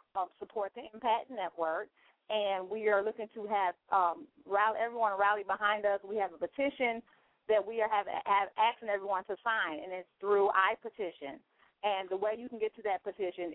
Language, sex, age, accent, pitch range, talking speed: English, female, 40-59, American, 180-220 Hz, 175 wpm